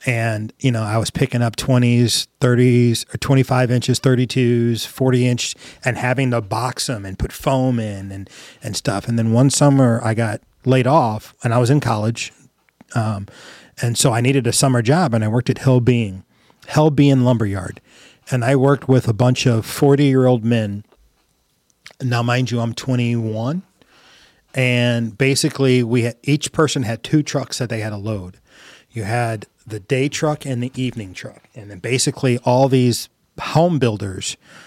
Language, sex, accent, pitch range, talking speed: English, male, American, 115-135 Hz, 175 wpm